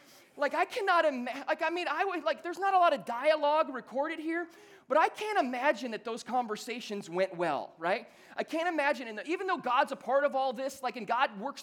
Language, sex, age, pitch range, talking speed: English, male, 30-49, 170-280 Hz, 230 wpm